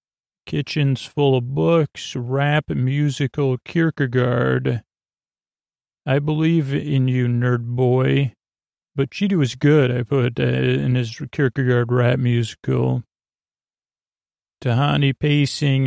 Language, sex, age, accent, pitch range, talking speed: English, male, 40-59, American, 125-145 Hz, 100 wpm